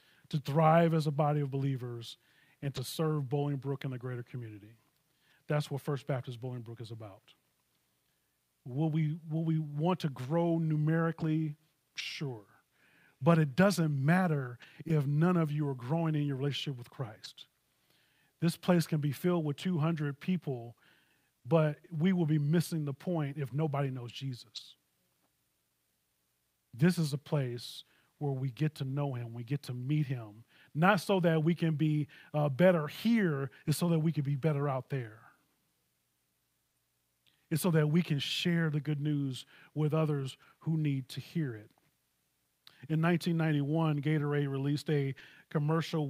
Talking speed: 155 wpm